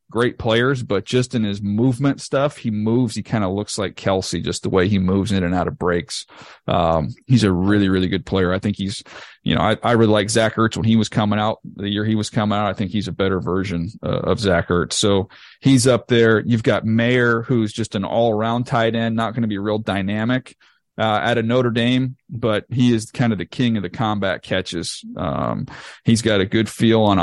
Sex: male